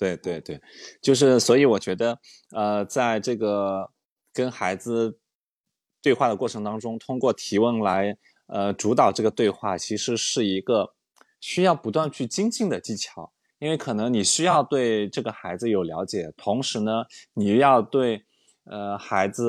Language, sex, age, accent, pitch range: Chinese, male, 20-39, native, 100-135 Hz